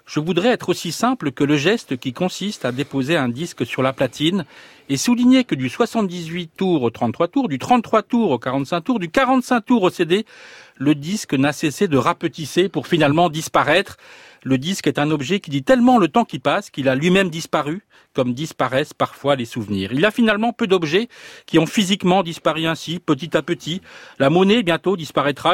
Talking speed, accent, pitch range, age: 195 wpm, French, 145-200 Hz, 40-59